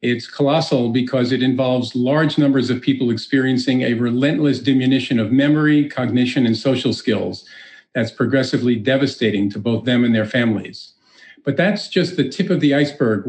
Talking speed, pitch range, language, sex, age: 165 wpm, 120-140 Hz, English, male, 50-69